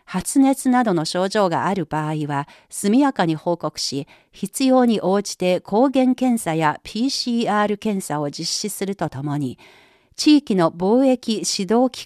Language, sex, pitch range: Japanese, female, 165-245 Hz